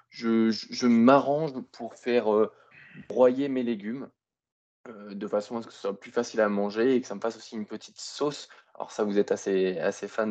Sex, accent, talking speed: male, French, 220 wpm